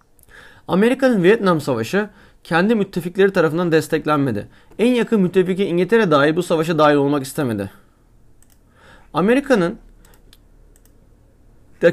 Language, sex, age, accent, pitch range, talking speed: Turkish, male, 30-49, native, 145-195 Hz, 95 wpm